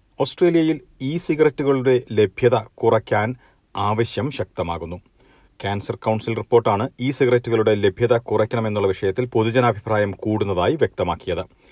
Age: 40-59